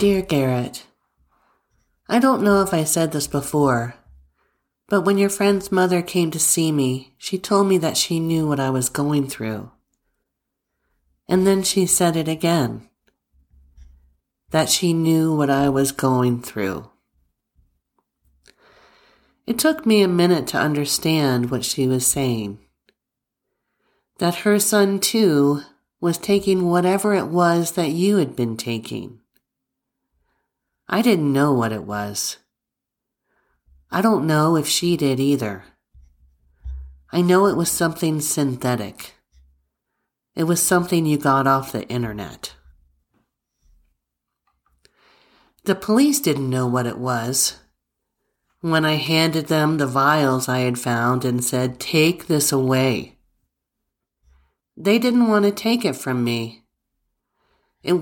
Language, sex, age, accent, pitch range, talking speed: English, male, 40-59, American, 115-175 Hz, 130 wpm